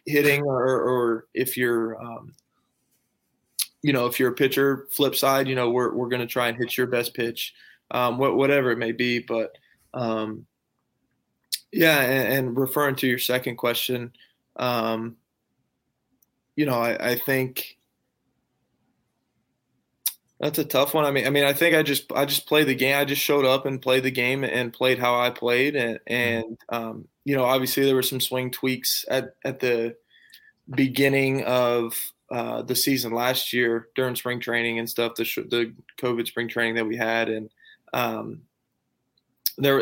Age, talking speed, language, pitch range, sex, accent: 20-39, 175 wpm, English, 115-135 Hz, male, American